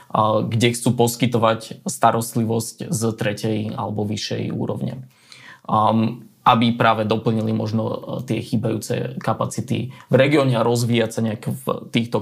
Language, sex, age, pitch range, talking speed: Slovak, male, 20-39, 110-125 Hz, 120 wpm